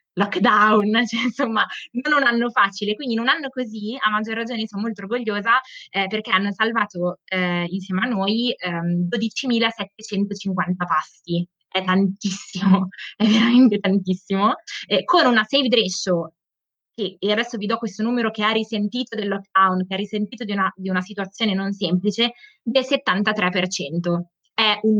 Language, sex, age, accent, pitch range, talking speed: Italian, female, 20-39, native, 180-215 Hz, 150 wpm